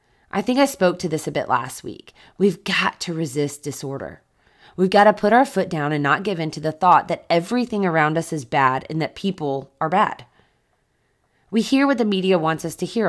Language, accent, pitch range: English, American, 160-220 Hz